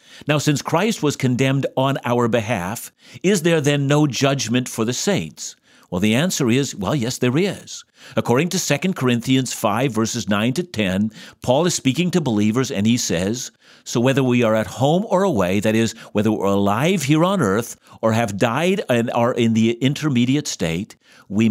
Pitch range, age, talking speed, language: 115-155 Hz, 50-69, 185 wpm, English